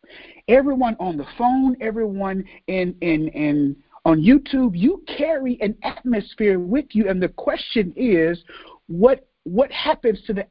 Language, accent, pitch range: English, American, 155-220 Hz